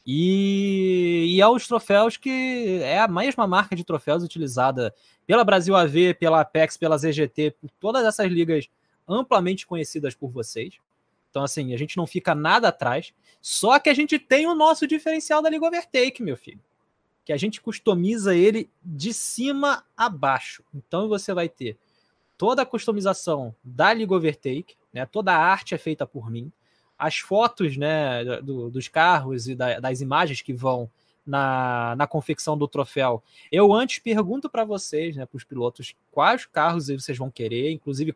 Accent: Brazilian